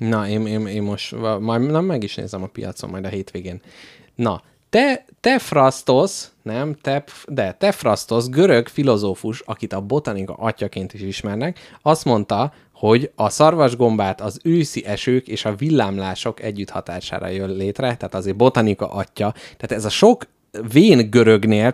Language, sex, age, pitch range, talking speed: Hungarian, male, 30-49, 105-140 Hz, 155 wpm